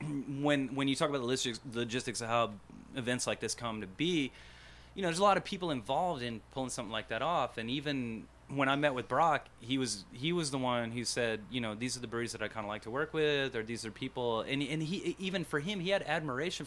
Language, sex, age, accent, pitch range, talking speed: English, male, 30-49, American, 110-145 Hz, 255 wpm